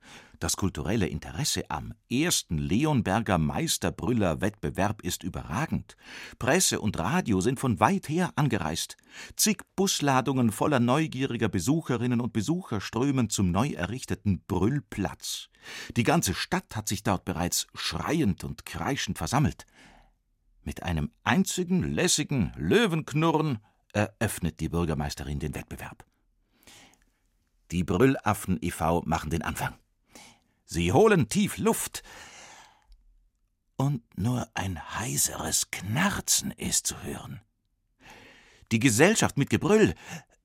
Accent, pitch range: German, 90-155 Hz